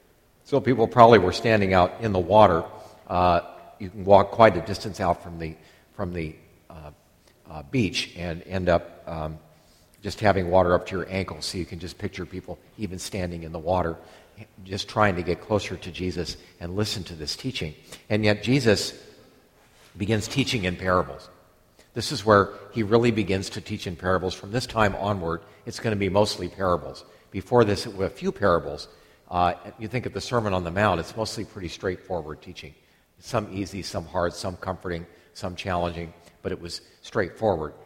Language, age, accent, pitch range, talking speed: English, 50-69, American, 85-110 Hz, 185 wpm